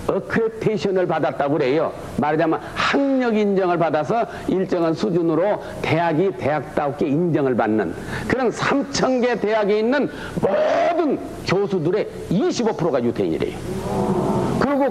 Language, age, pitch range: Korean, 60-79, 180-260 Hz